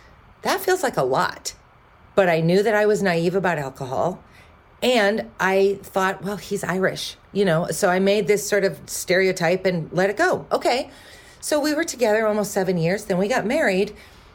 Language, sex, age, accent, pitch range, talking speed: English, female, 40-59, American, 140-200 Hz, 190 wpm